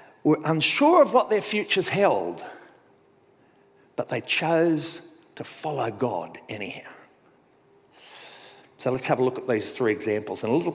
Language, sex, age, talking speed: English, male, 50-69, 145 wpm